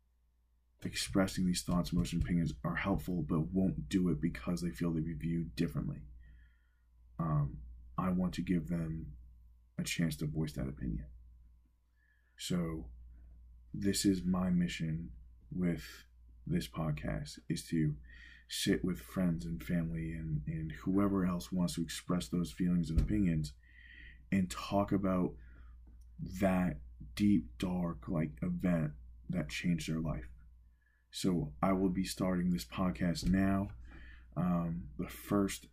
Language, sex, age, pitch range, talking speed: English, male, 20-39, 65-90 Hz, 135 wpm